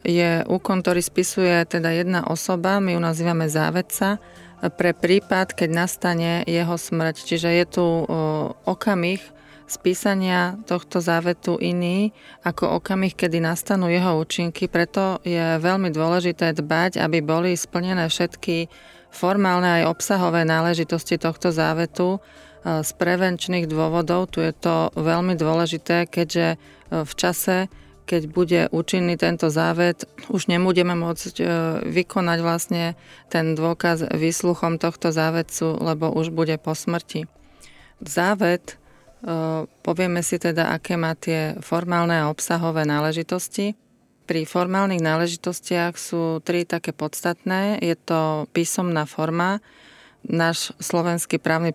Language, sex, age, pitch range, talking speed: Slovak, female, 30-49, 165-180 Hz, 120 wpm